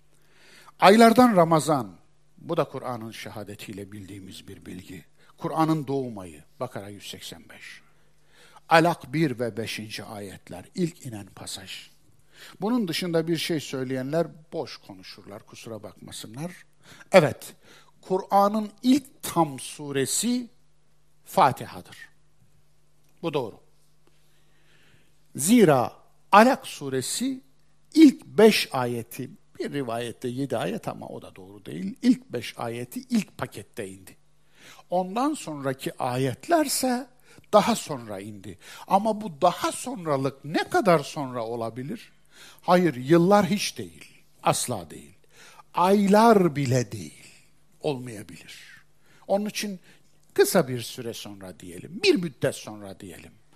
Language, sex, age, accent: Turkish, male, 60-79, native